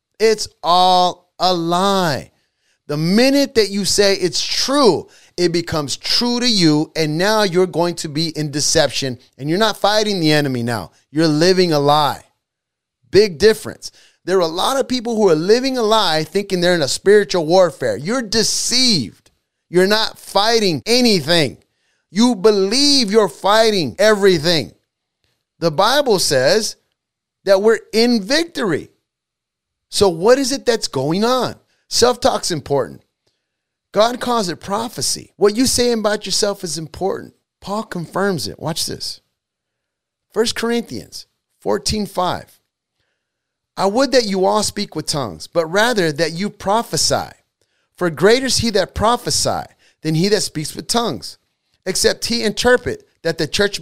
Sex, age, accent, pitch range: male, 30-49, American, 160-225 Hz